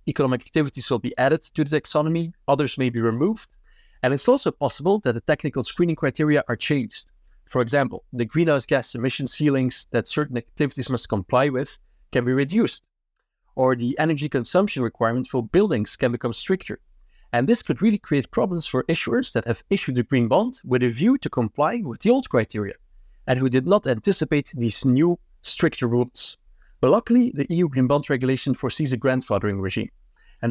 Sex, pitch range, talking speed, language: male, 125-160 Hz, 185 wpm, English